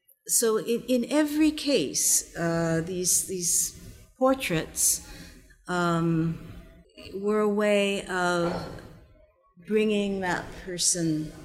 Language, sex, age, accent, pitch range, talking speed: English, female, 50-69, American, 155-195 Hz, 90 wpm